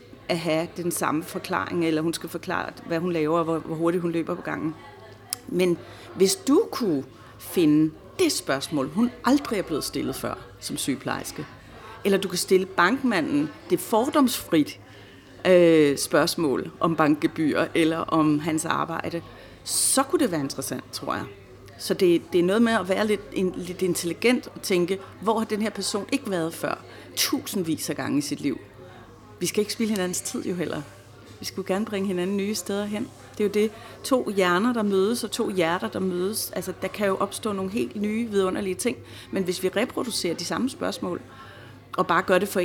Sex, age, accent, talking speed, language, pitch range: female, 40-59, native, 190 wpm, Danish, 155-200 Hz